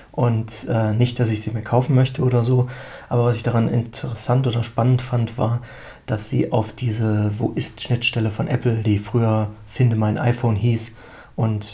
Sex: male